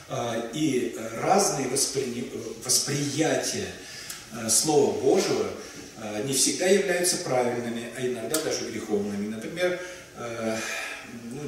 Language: Russian